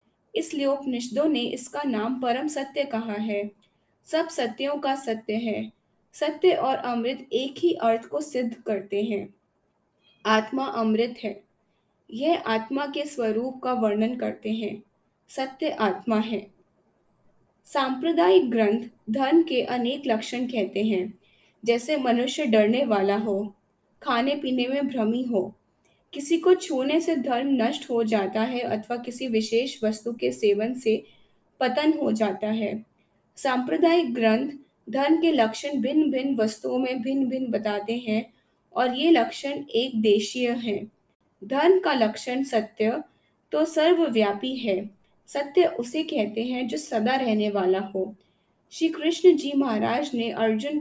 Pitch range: 220-280 Hz